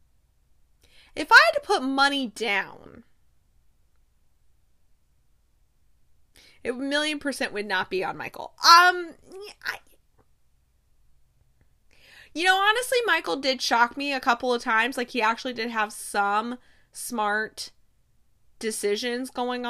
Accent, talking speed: American, 110 wpm